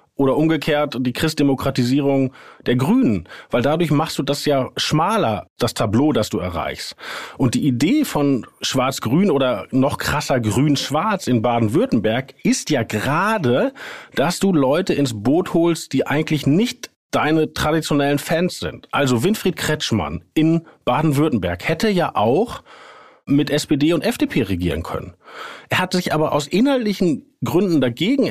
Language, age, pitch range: German, 40-59, 125-180 Hz